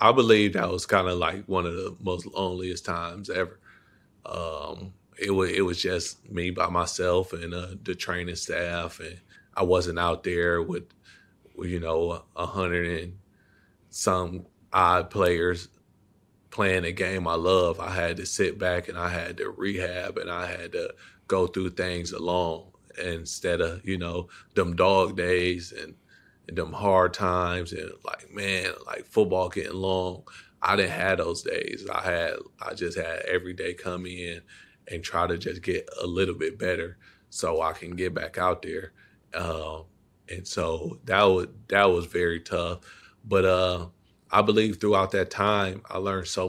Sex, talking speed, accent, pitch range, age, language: male, 170 wpm, American, 85-95 Hz, 30-49, English